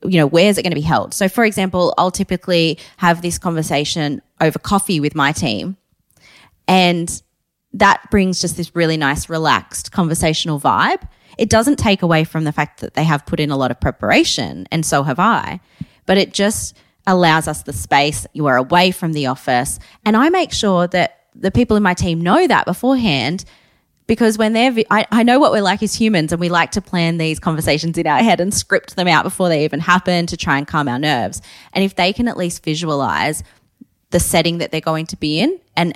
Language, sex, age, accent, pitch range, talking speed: English, female, 20-39, Australian, 155-195 Hz, 215 wpm